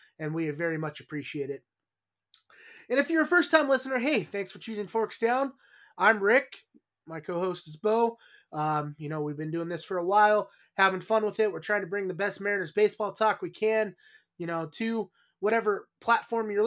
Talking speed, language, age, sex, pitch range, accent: 195 wpm, English, 20-39, male, 170-220 Hz, American